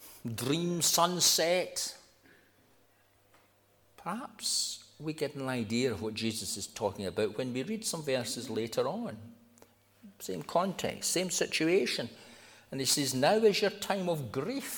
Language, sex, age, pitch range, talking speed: English, male, 60-79, 110-170 Hz, 135 wpm